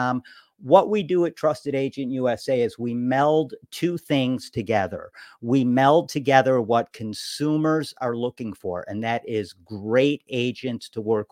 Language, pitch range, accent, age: English, 110-135 Hz, American, 50-69